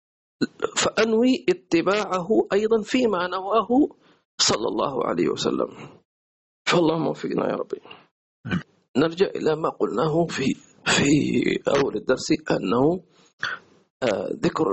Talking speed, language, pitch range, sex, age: 95 wpm, English, 175-225 Hz, male, 50-69